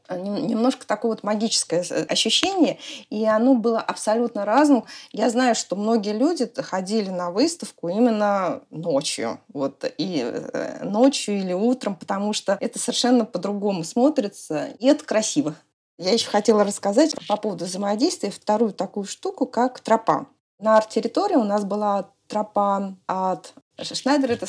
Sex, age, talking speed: female, 20-39, 135 wpm